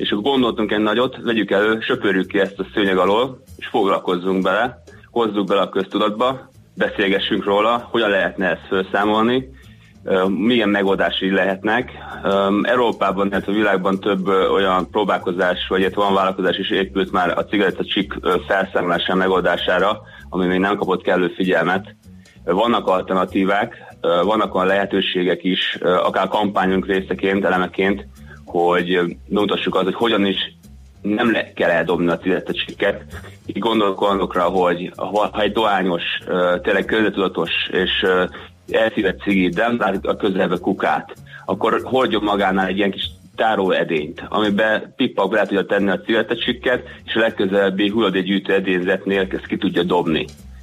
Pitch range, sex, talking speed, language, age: 90-105 Hz, male, 140 wpm, Hungarian, 30-49